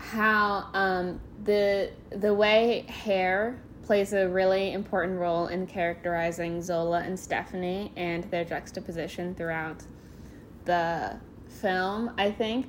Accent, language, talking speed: American, English, 115 wpm